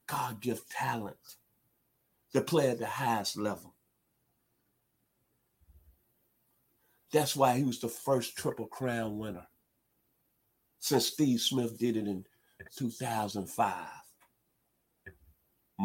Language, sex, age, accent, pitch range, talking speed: English, male, 50-69, American, 105-130 Hz, 95 wpm